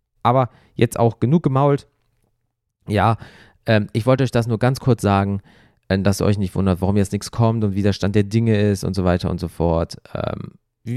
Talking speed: 210 wpm